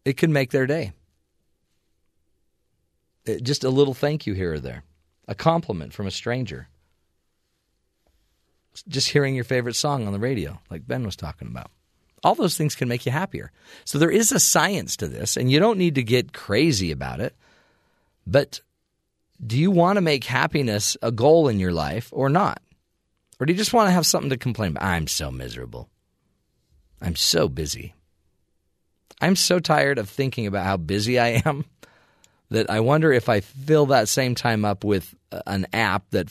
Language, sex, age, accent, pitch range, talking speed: English, male, 40-59, American, 85-135 Hz, 180 wpm